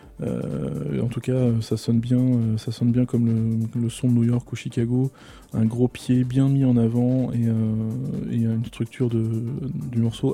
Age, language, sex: 20-39, English, male